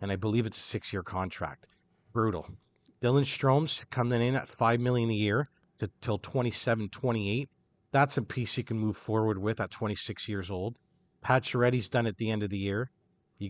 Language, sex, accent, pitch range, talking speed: English, male, American, 105-130 Hz, 185 wpm